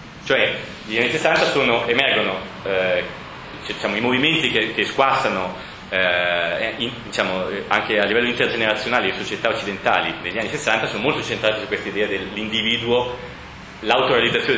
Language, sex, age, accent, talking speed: Italian, male, 30-49, native, 140 wpm